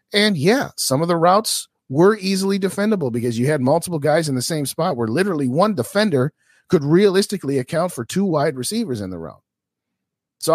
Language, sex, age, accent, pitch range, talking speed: English, male, 40-59, American, 100-165 Hz, 190 wpm